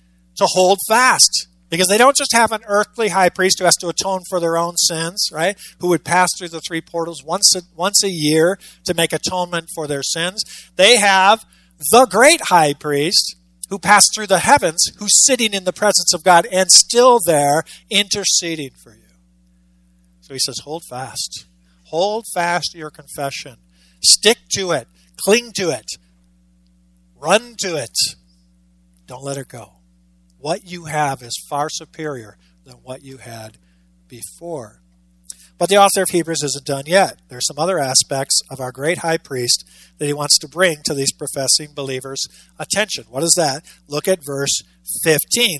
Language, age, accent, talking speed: English, 50-69, American, 170 wpm